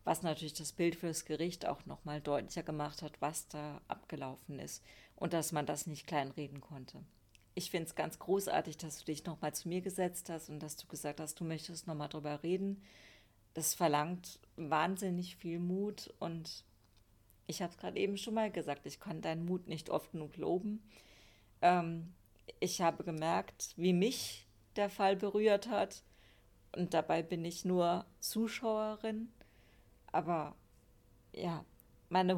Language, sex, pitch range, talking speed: German, female, 150-180 Hz, 165 wpm